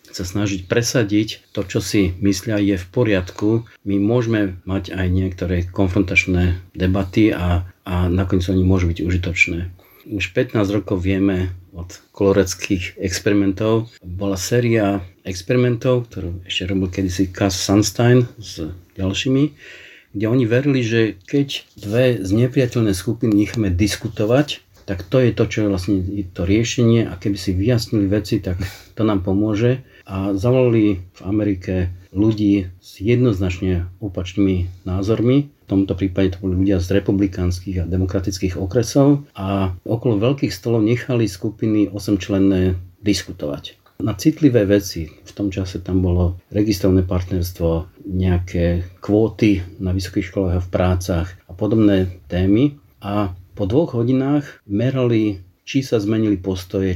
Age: 50-69